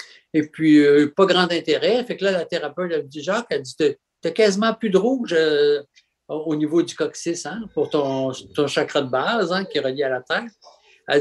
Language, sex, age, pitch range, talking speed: French, male, 60-79, 145-230 Hz, 220 wpm